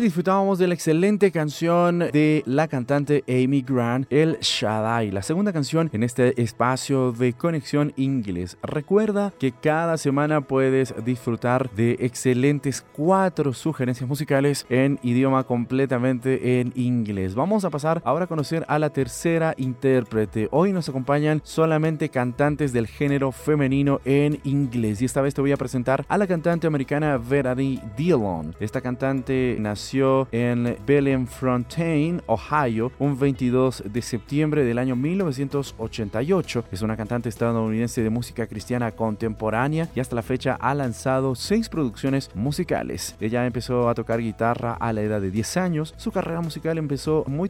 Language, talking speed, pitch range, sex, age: Spanish, 145 wpm, 120-150 Hz, male, 30-49